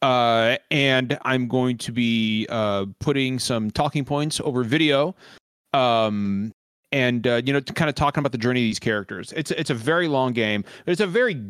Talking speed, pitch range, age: 195 wpm, 115-150 Hz, 30-49